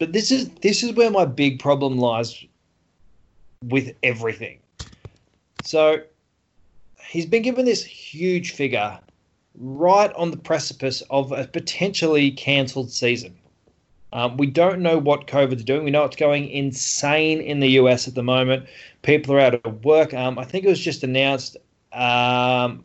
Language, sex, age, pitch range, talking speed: English, male, 20-39, 125-155 Hz, 155 wpm